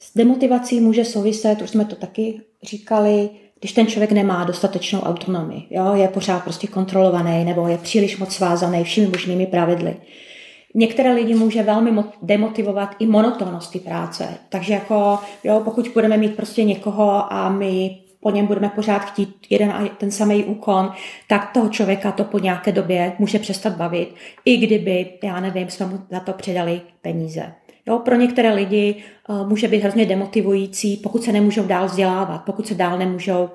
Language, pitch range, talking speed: Czech, 190-215 Hz, 170 wpm